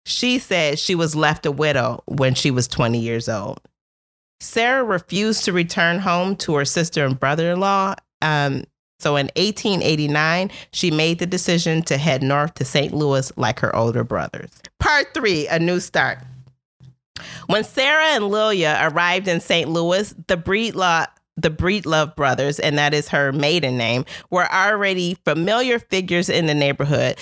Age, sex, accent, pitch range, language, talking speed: 40-59, female, American, 150-185 Hz, English, 160 wpm